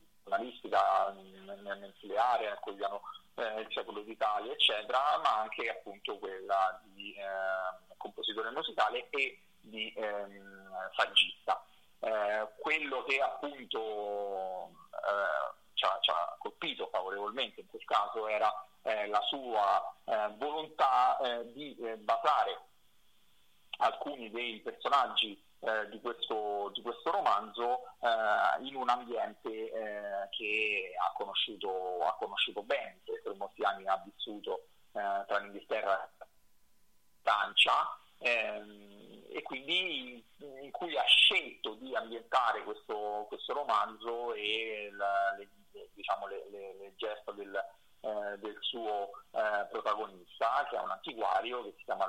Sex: male